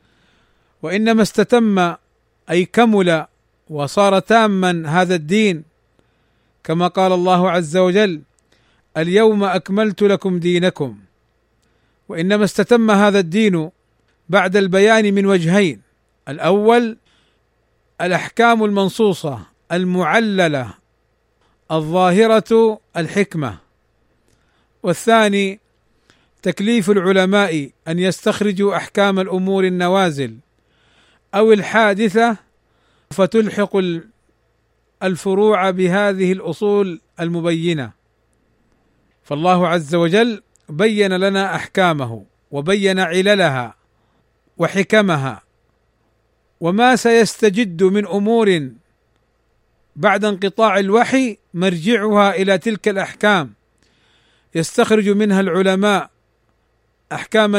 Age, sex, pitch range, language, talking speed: 40-59, male, 150-205 Hz, Arabic, 75 wpm